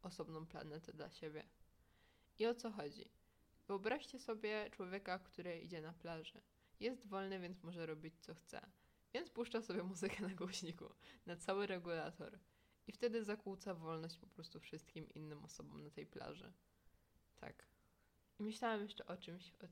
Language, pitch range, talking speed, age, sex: Polish, 170-210 Hz, 150 wpm, 20-39, female